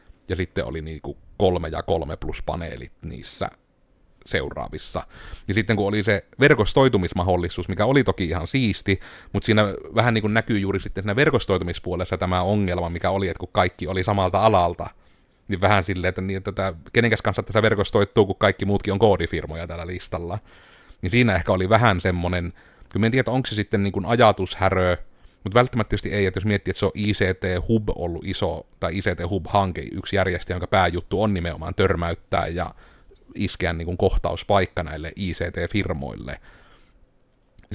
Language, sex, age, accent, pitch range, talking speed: Finnish, male, 30-49, native, 90-105 Hz, 165 wpm